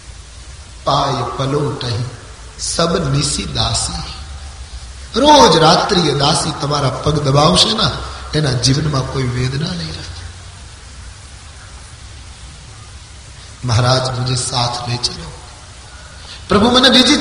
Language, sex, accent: Gujarati, male, native